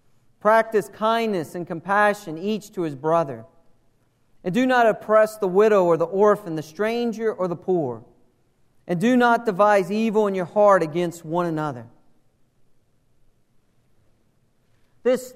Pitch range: 150-225 Hz